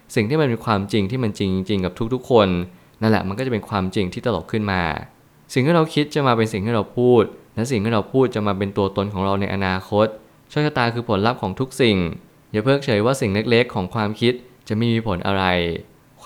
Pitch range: 100-120 Hz